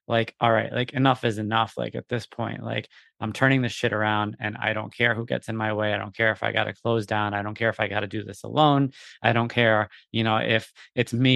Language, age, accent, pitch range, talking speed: English, 20-39, American, 110-125 Hz, 280 wpm